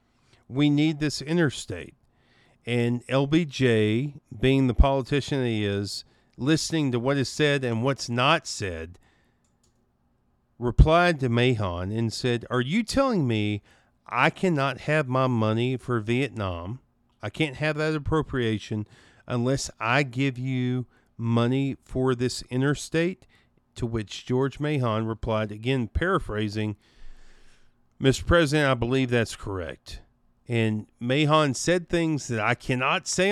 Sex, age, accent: male, 50-69, American